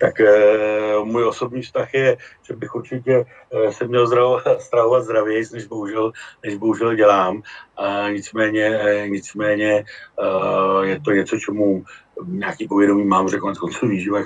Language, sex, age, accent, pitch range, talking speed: Czech, male, 60-79, native, 100-115 Hz, 145 wpm